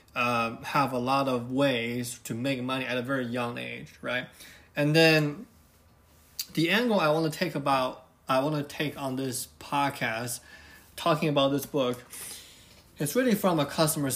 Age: 20-39